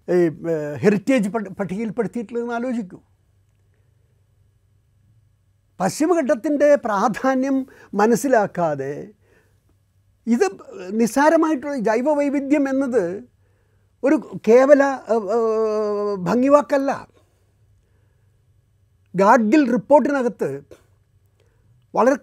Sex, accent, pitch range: male, native, 145-240 Hz